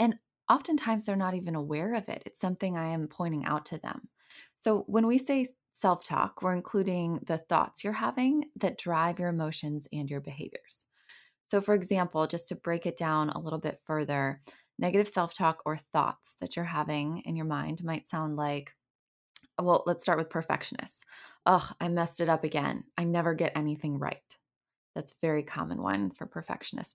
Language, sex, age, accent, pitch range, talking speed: English, female, 20-39, American, 155-195 Hz, 185 wpm